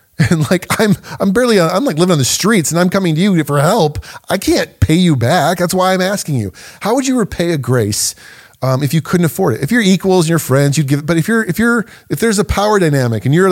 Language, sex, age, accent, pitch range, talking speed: English, male, 30-49, American, 125-175 Hz, 270 wpm